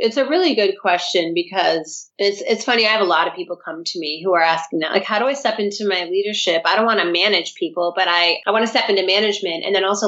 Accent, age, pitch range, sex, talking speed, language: American, 30-49, 180-240 Hz, female, 280 wpm, English